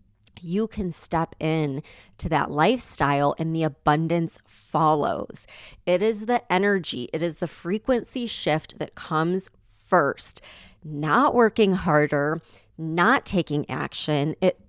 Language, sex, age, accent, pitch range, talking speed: English, female, 20-39, American, 150-195 Hz, 125 wpm